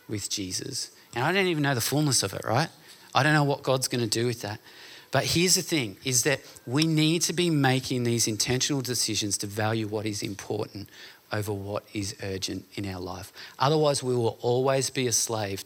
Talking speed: 210 wpm